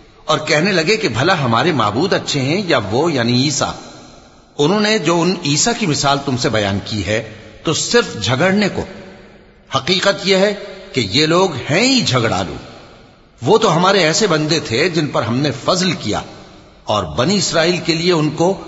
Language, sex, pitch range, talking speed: English, male, 120-185 Hz, 170 wpm